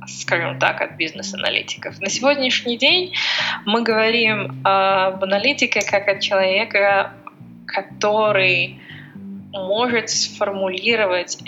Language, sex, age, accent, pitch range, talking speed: Russian, female, 20-39, native, 180-205 Hz, 90 wpm